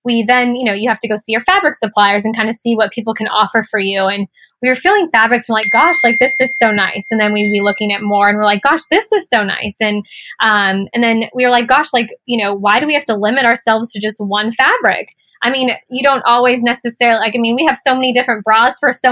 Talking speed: 280 wpm